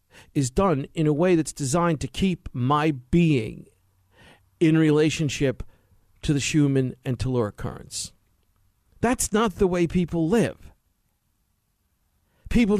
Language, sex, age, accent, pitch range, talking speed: English, male, 50-69, American, 110-165 Hz, 120 wpm